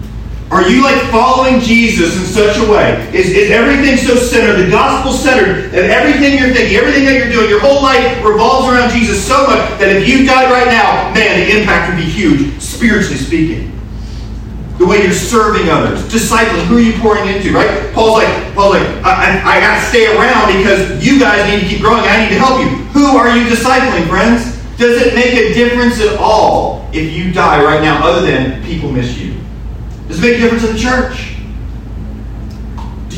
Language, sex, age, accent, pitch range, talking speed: English, male, 40-59, American, 145-235 Hz, 195 wpm